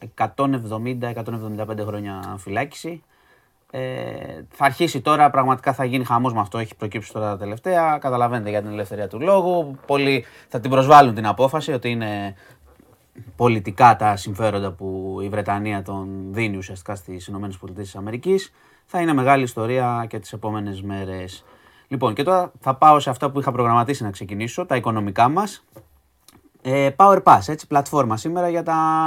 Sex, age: male, 30-49